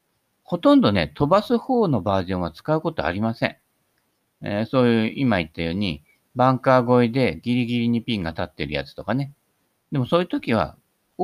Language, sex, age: Japanese, male, 50-69